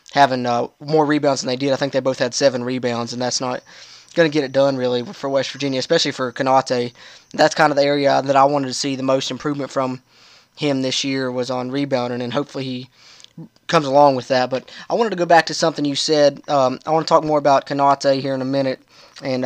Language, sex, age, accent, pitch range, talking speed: English, male, 20-39, American, 135-150 Hz, 245 wpm